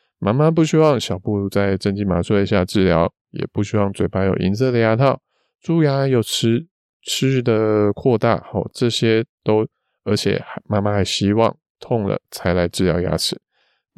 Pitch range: 95-115 Hz